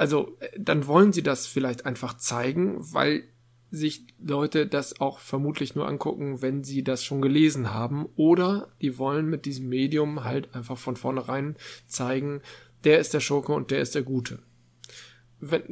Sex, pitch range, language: male, 125-150 Hz, German